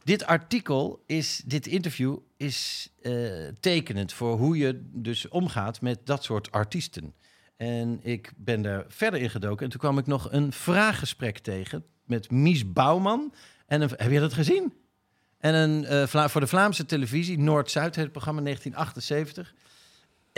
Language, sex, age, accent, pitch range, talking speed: Dutch, male, 50-69, Dutch, 120-170 Hz, 145 wpm